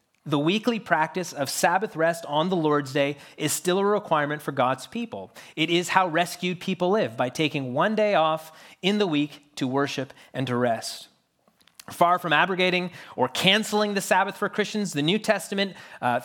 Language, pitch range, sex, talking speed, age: English, 145-195 Hz, male, 180 wpm, 30-49